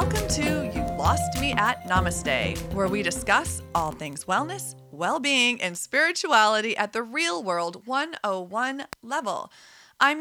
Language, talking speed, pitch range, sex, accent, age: English, 135 wpm, 180-255 Hz, female, American, 30-49